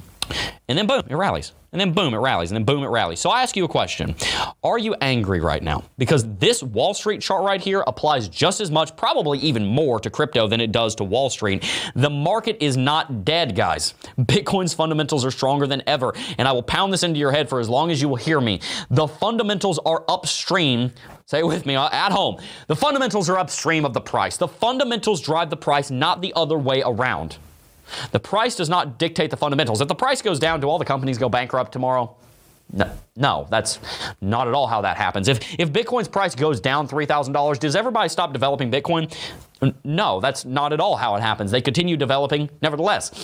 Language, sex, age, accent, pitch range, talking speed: English, male, 30-49, American, 130-180 Hz, 215 wpm